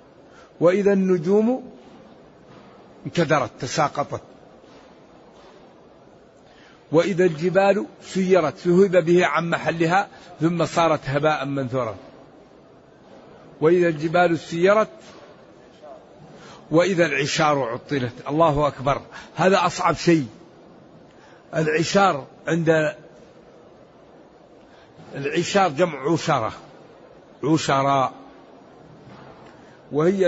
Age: 60-79